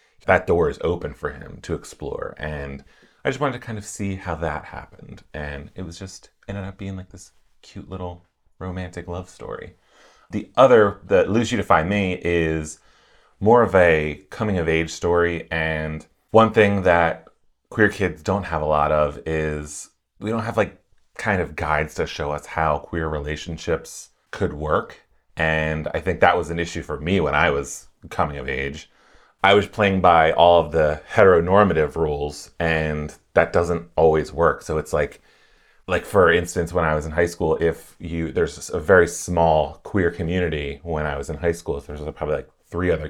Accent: American